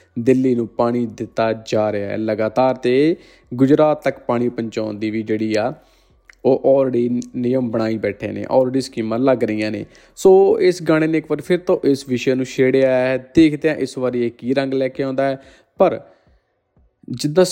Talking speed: 180 wpm